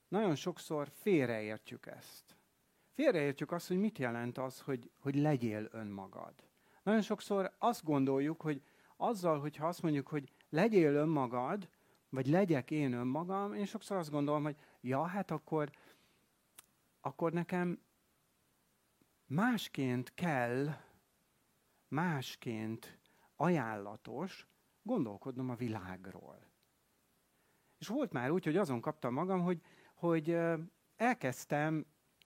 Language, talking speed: Hungarian, 110 wpm